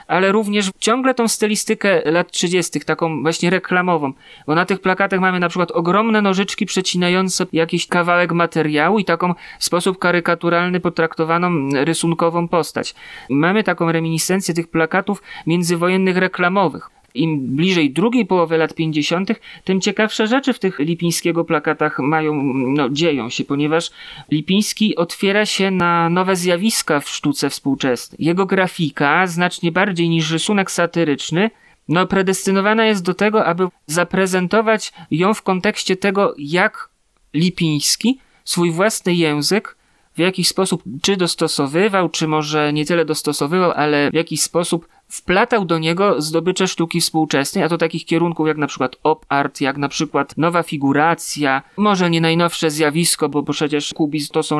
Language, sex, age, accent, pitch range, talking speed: Polish, male, 30-49, native, 155-190 Hz, 145 wpm